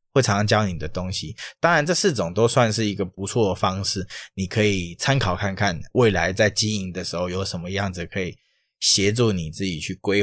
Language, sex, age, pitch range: Chinese, male, 20-39, 95-120 Hz